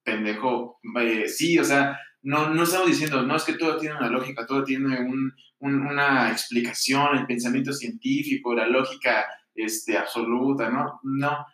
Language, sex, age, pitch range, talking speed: Spanish, male, 20-39, 120-155 Hz, 160 wpm